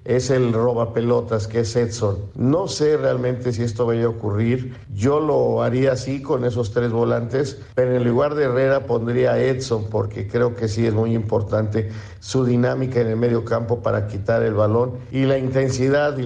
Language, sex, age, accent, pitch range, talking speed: Spanish, male, 50-69, Mexican, 110-125 Hz, 195 wpm